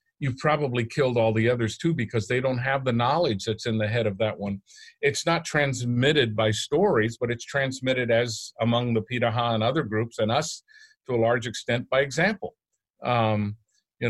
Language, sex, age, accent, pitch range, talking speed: English, male, 50-69, American, 110-130 Hz, 190 wpm